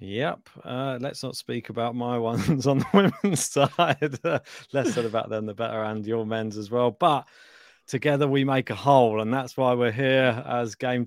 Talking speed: 200 wpm